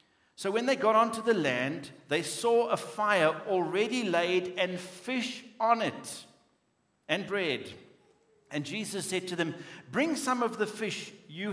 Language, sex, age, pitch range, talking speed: English, male, 60-79, 155-210 Hz, 155 wpm